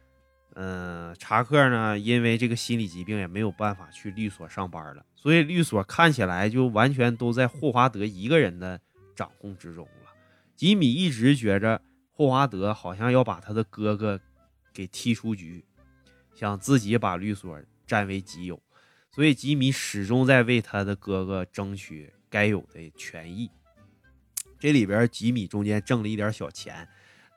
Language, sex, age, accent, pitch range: Chinese, male, 20-39, native, 95-120 Hz